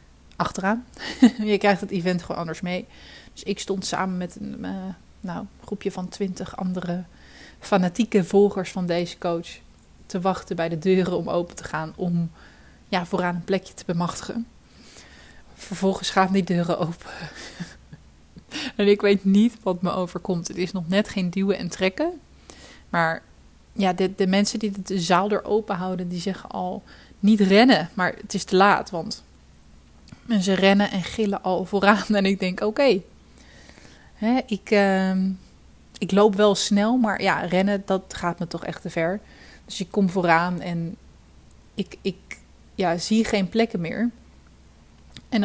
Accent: Dutch